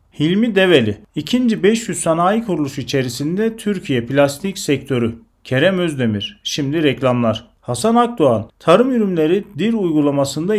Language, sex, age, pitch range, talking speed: Turkish, male, 40-59, 130-190 Hz, 115 wpm